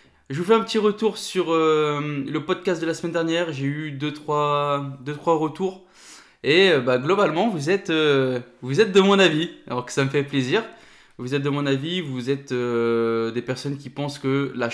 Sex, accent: male, French